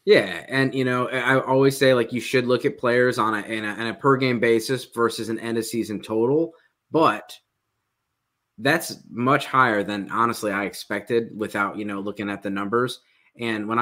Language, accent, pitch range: English, American, 105-125 Hz